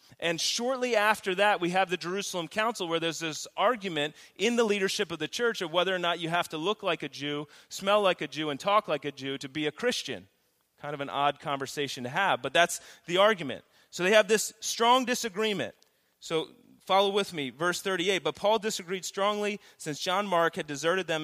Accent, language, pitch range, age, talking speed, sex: American, English, 145-200 Hz, 30-49, 215 wpm, male